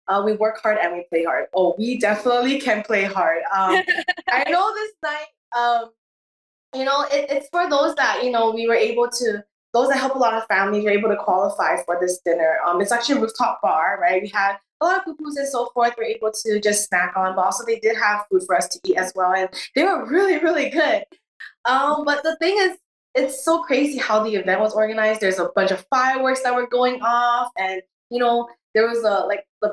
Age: 20-39